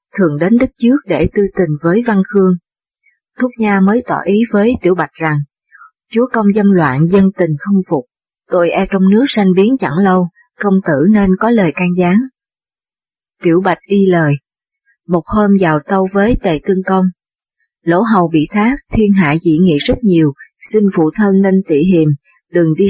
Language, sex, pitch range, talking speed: Vietnamese, female, 165-215 Hz, 190 wpm